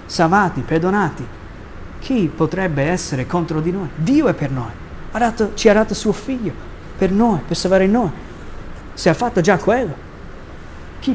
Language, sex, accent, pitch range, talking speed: Italian, male, native, 145-185 Hz, 160 wpm